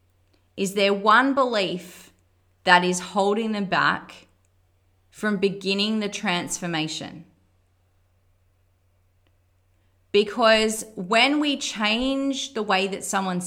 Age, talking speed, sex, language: 30-49, 95 wpm, female, English